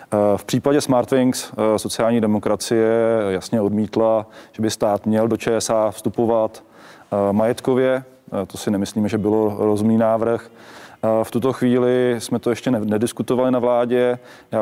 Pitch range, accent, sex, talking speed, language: 105-115 Hz, native, male, 130 wpm, Czech